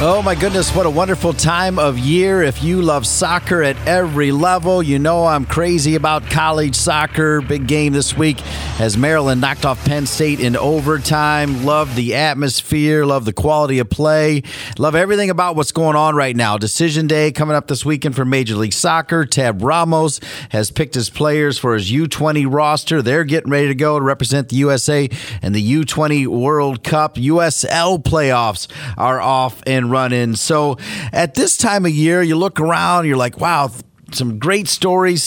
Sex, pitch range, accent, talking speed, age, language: male, 135-165 Hz, American, 180 wpm, 40-59, English